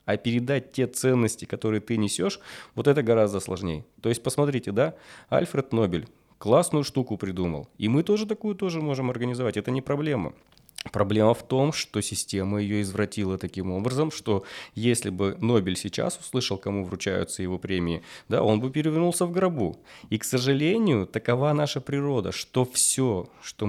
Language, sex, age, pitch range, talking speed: Russian, male, 20-39, 95-125 Hz, 160 wpm